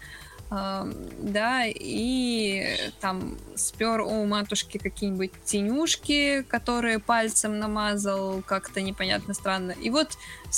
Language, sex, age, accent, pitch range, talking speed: Russian, female, 20-39, native, 205-245 Hz, 95 wpm